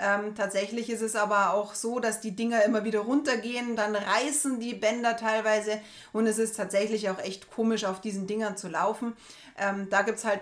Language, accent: German, German